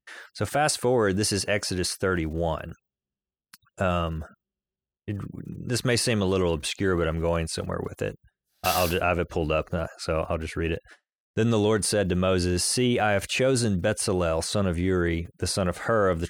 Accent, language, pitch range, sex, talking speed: American, English, 85-100 Hz, male, 195 wpm